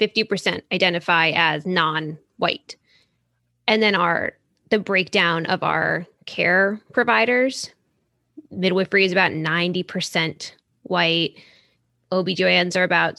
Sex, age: female, 10-29